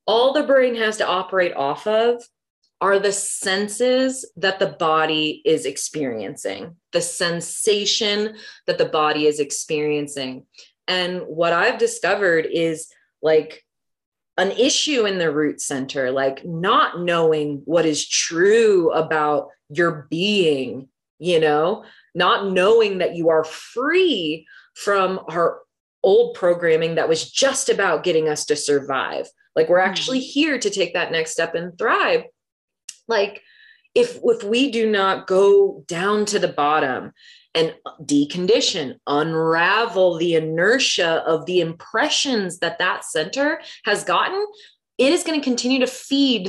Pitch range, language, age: 165-265 Hz, English, 20-39